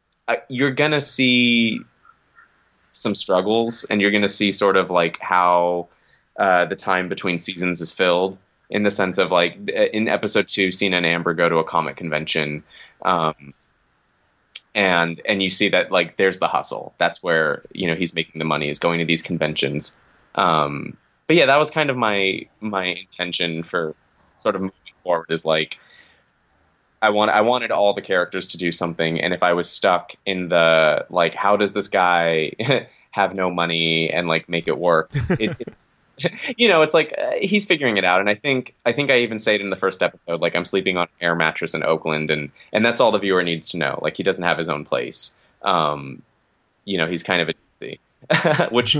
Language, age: English, 20-39